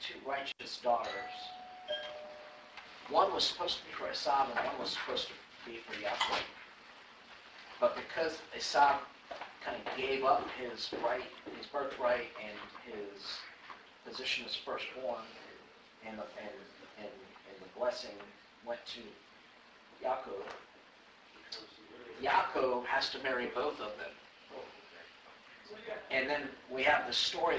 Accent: American